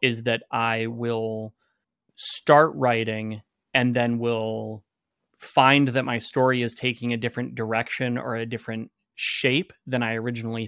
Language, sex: English, male